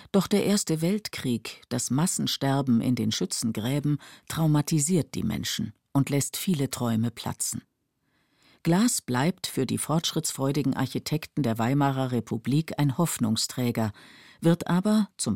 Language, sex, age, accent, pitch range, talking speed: German, female, 50-69, German, 120-160 Hz, 120 wpm